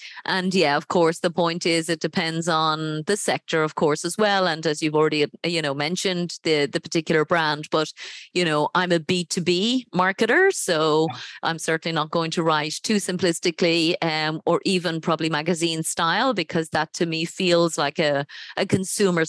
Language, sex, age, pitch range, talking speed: English, female, 30-49, 160-190 Hz, 180 wpm